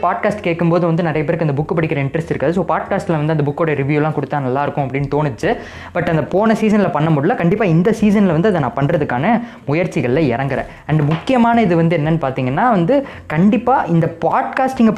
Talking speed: 180 wpm